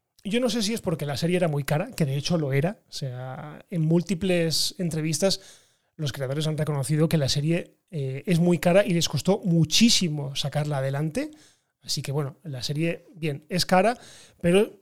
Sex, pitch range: male, 150-195 Hz